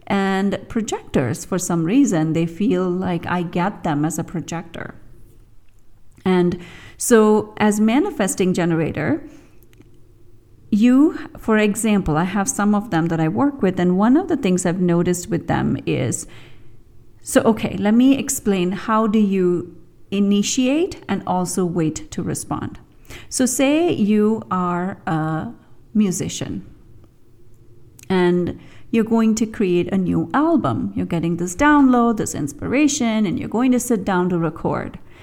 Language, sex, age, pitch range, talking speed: English, female, 40-59, 170-245 Hz, 140 wpm